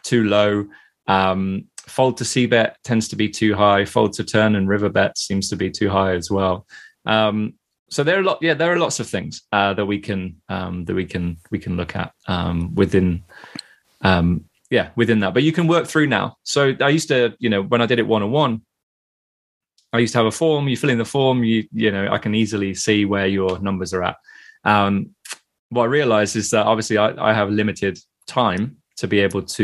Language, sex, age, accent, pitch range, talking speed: English, male, 20-39, British, 95-115 Hz, 230 wpm